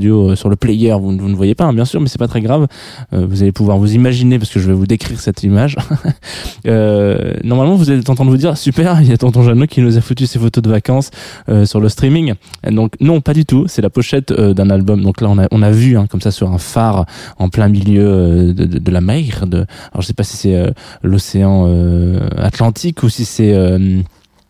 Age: 20-39